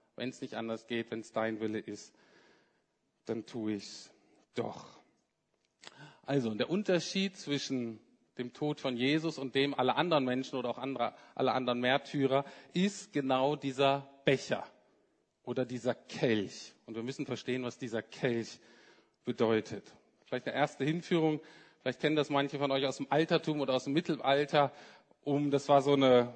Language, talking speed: German, 160 wpm